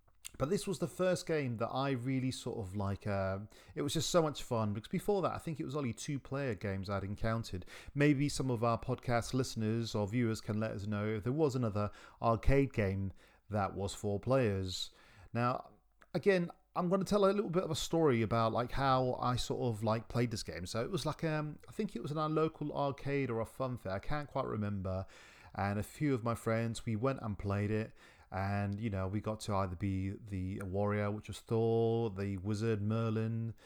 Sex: male